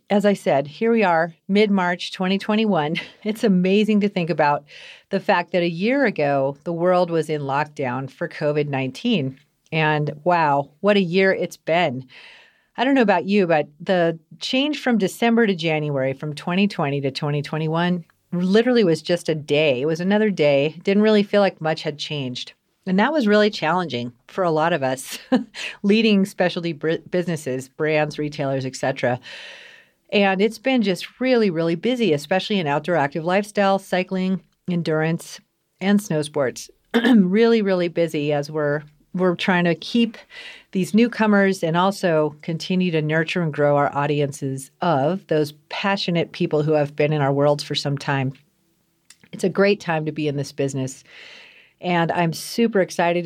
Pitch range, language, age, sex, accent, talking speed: 150-200 Hz, English, 40-59, female, American, 165 wpm